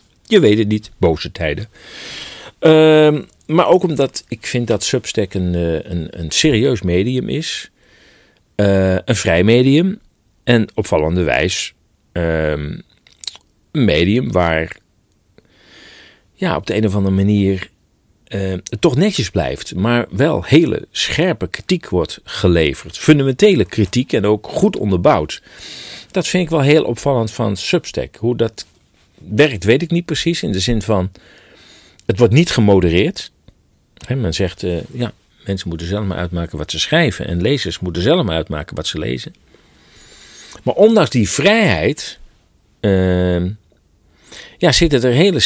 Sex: male